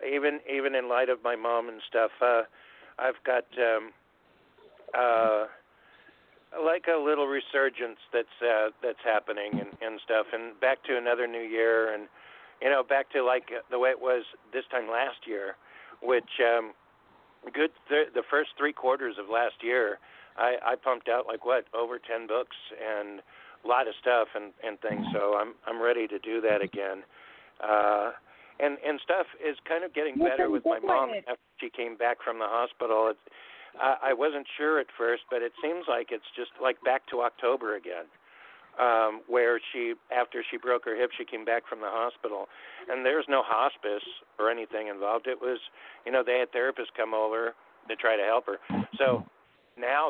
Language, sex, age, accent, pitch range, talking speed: English, male, 50-69, American, 115-135 Hz, 185 wpm